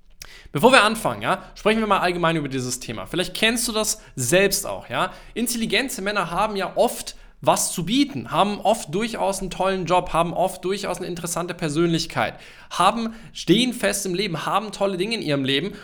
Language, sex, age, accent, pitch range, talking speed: German, male, 20-39, German, 140-185 Hz, 185 wpm